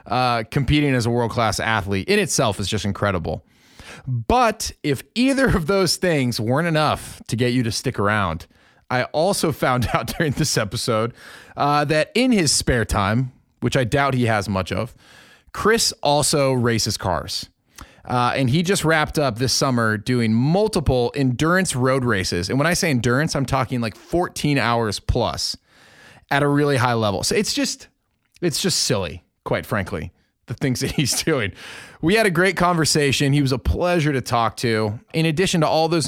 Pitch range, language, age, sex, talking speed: 110-150 Hz, English, 30-49, male, 180 wpm